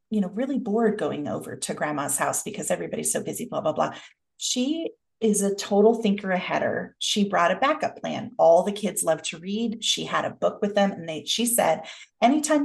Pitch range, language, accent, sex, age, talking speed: 185-230 Hz, English, American, female, 30-49, 210 wpm